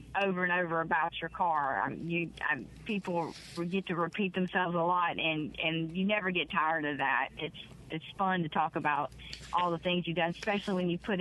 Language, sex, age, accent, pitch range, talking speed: English, female, 30-49, American, 165-195 Hz, 205 wpm